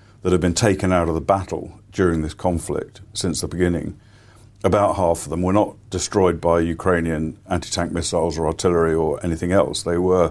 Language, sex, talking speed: English, male, 185 wpm